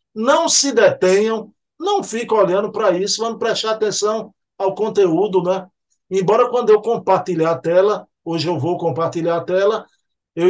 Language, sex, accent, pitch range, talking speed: Portuguese, male, Brazilian, 165-195 Hz, 155 wpm